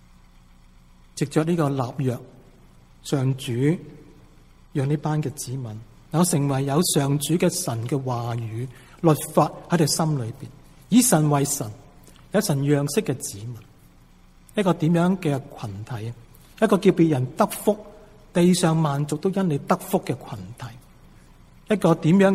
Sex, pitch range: male, 125-175 Hz